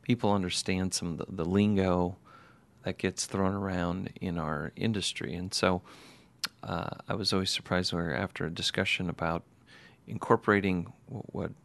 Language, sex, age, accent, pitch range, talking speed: English, male, 40-59, American, 90-110 Hz, 150 wpm